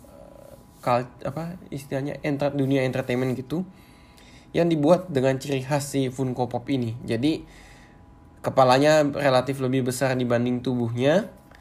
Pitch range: 120-140 Hz